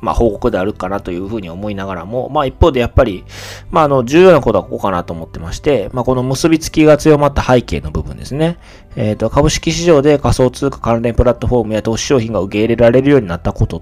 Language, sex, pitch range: Japanese, male, 95-120 Hz